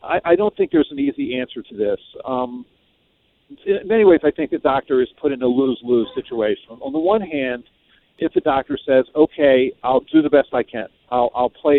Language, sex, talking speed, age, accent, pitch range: English, male, 215 wpm, 50-69, American, 120-165 Hz